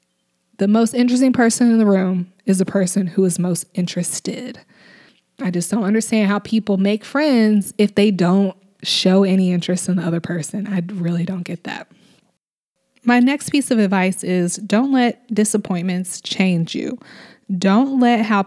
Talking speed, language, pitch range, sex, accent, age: 165 wpm, English, 185-235 Hz, female, American, 20-39